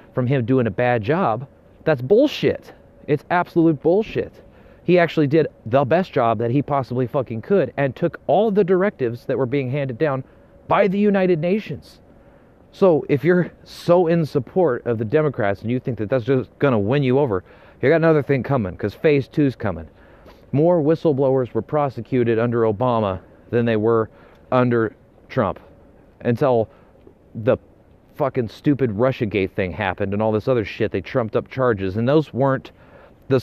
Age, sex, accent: 30-49, male, American